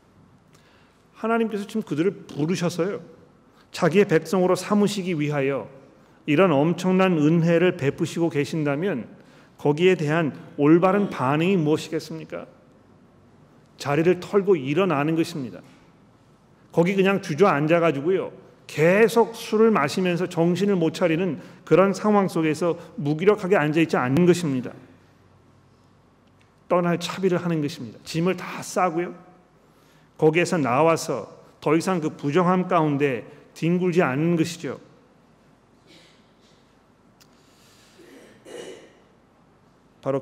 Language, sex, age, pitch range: Korean, male, 40-59, 145-185 Hz